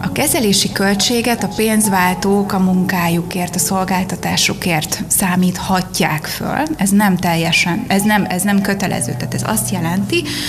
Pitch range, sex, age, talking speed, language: 175-205 Hz, female, 20-39, 115 wpm, Hungarian